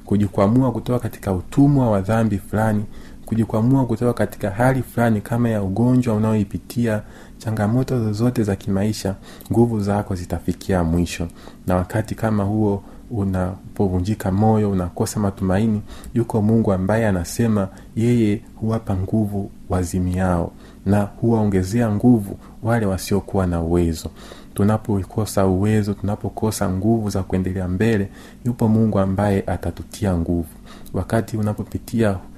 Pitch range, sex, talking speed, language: 95-110 Hz, male, 115 wpm, Swahili